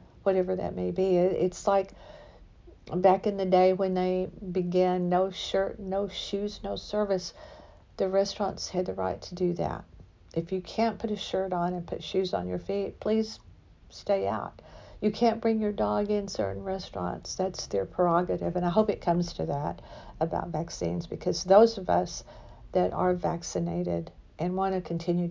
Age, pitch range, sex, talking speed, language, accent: 50-69, 170-205 Hz, female, 175 wpm, English, American